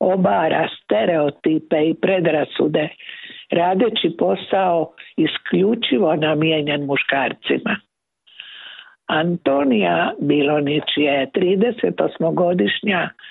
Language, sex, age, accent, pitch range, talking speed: Croatian, female, 60-79, native, 150-190 Hz, 60 wpm